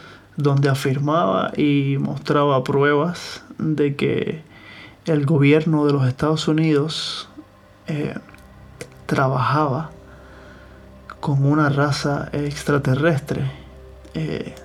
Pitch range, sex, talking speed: 130-145 Hz, male, 80 wpm